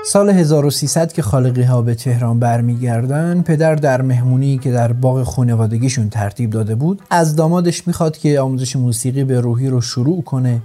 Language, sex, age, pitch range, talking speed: Persian, male, 30-49, 120-155 Hz, 165 wpm